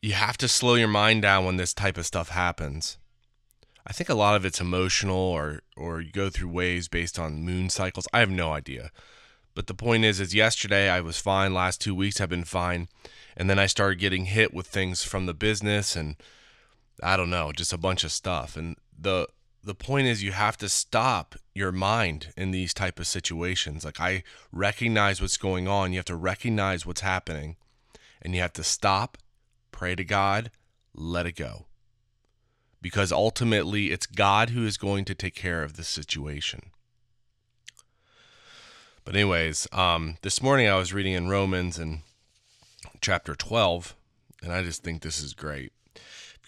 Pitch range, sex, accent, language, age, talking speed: 85-110 Hz, male, American, English, 20-39, 185 wpm